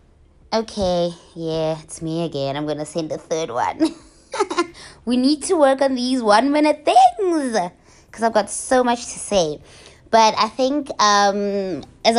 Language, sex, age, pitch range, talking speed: English, female, 20-39, 165-220 Hz, 155 wpm